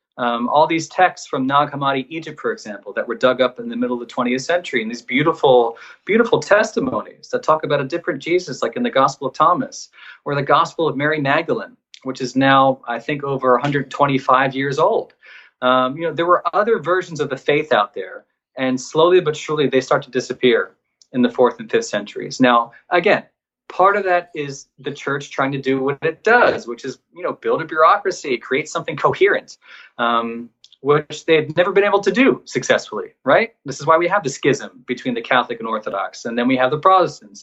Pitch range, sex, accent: 125-155 Hz, male, American